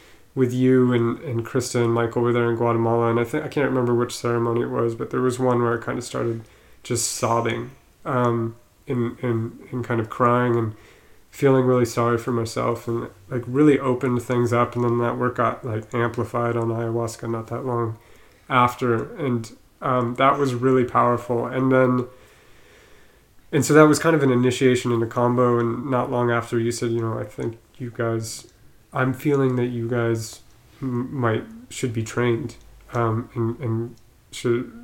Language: English